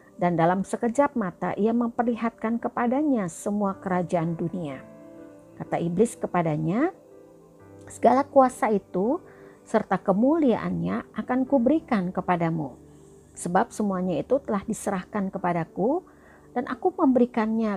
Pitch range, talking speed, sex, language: 180-245 Hz, 100 wpm, female, Indonesian